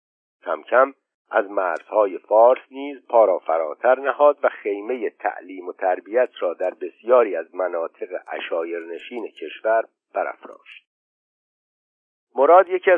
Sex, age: male, 60-79